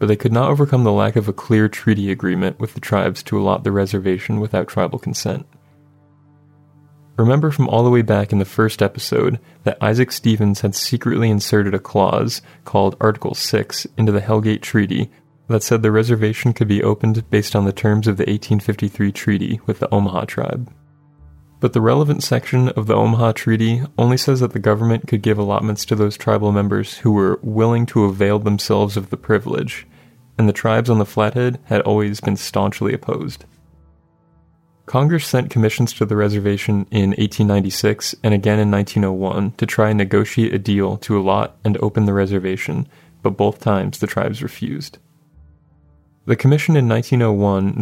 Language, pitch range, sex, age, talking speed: English, 100-120 Hz, male, 20-39, 175 wpm